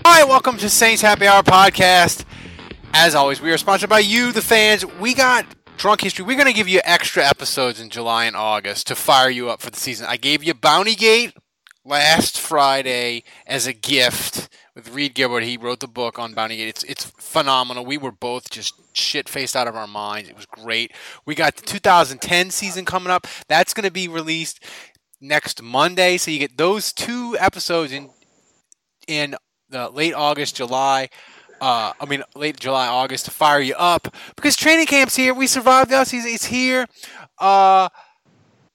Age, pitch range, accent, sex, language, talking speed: 20-39, 125-205 Hz, American, male, English, 185 wpm